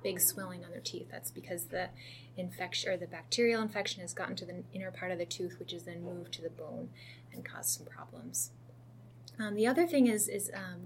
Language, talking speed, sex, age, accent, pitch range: English, 220 wpm, female, 10-29, American, 165-230 Hz